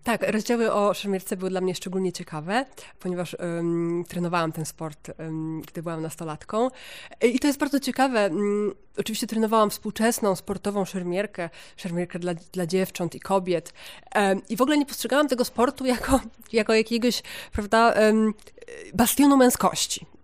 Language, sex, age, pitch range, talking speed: Polish, female, 30-49, 180-235 Hz, 135 wpm